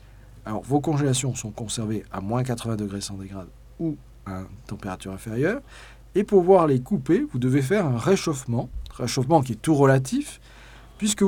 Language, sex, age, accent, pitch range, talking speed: French, male, 40-59, French, 115-150 Hz, 165 wpm